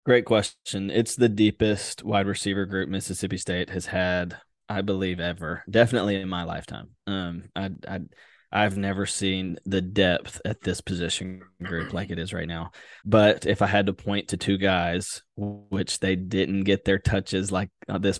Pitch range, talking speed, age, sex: 95-100 Hz, 175 wpm, 20-39, male